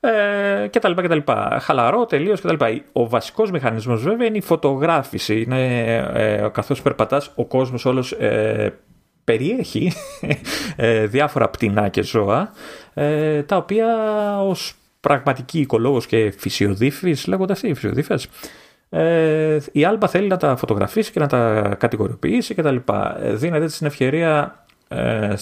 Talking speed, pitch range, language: 150 wpm, 110-165 Hz, Greek